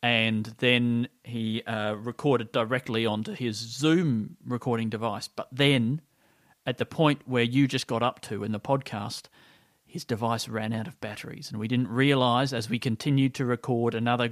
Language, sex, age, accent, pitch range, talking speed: English, male, 40-59, Australian, 115-135 Hz, 170 wpm